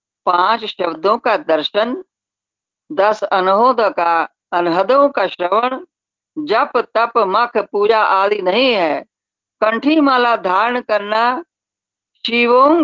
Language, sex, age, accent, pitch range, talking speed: Hindi, female, 50-69, native, 165-235 Hz, 105 wpm